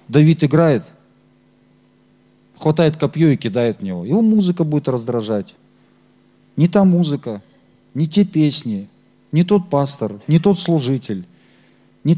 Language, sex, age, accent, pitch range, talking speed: Russian, male, 40-59, native, 125-185 Hz, 125 wpm